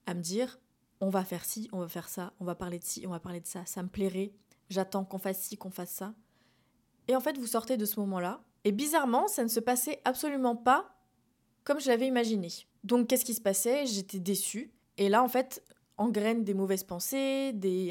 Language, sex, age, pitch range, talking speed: French, female, 20-39, 195-245 Hz, 230 wpm